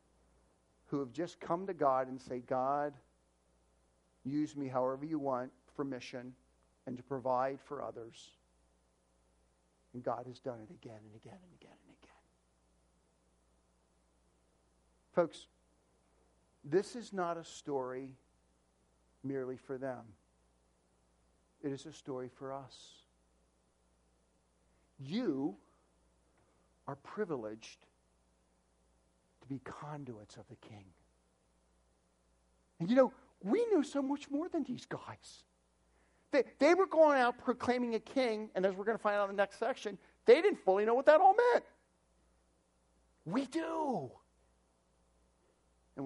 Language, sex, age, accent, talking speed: English, male, 50-69, American, 125 wpm